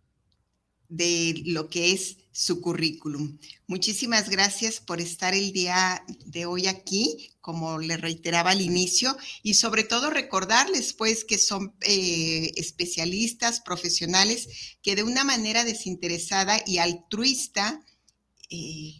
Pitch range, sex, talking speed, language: 170-205 Hz, female, 120 wpm, Spanish